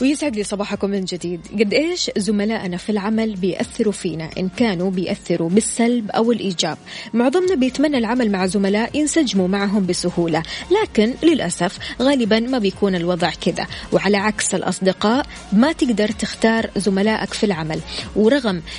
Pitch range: 190-240 Hz